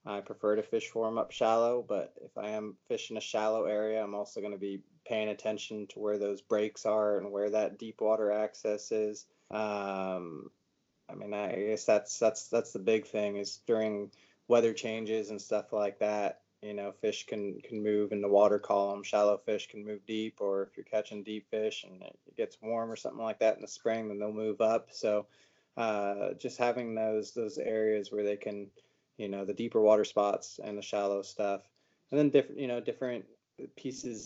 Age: 20-39